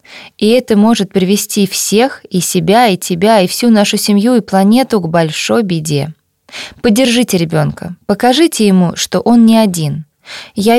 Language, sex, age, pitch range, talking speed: Russian, female, 20-39, 180-230 Hz, 150 wpm